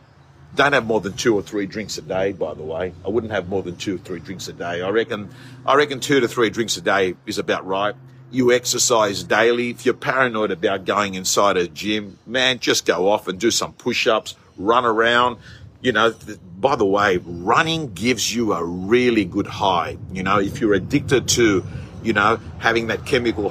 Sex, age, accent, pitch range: male, 50-69, Australian, 105-165 Hz